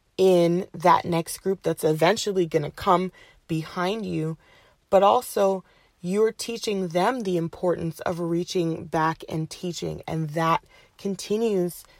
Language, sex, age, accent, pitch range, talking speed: English, female, 30-49, American, 165-195 Hz, 130 wpm